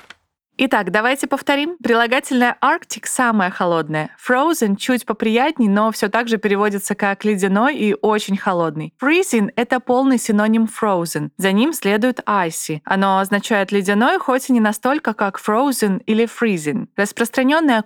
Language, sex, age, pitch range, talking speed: Russian, female, 20-39, 200-245 Hz, 135 wpm